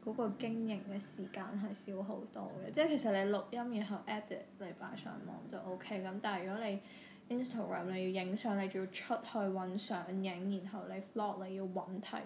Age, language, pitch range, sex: 10-29, Chinese, 190-225 Hz, female